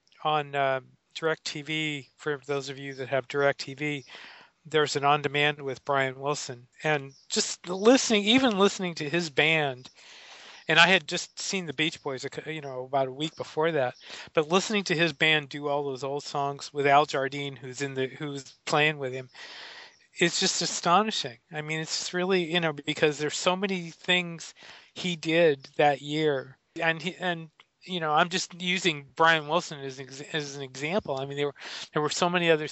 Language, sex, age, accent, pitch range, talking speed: English, male, 40-59, American, 140-175 Hz, 190 wpm